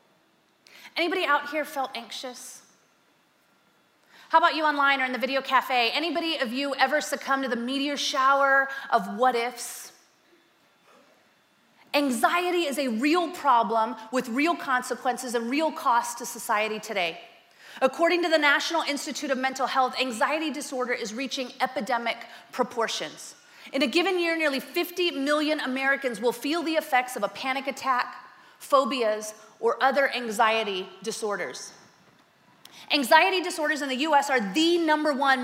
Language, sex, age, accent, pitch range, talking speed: English, female, 30-49, American, 240-300 Hz, 140 wpm